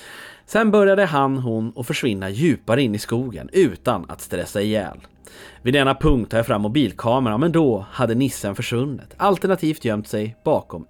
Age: 30-49